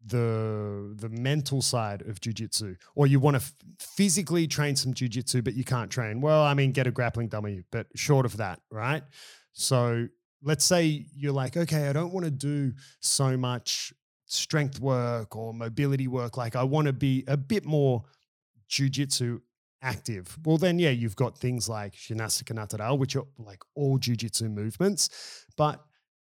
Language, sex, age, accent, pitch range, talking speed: English, male, 30-49, Australian, 115-140 Hz, 165 wpm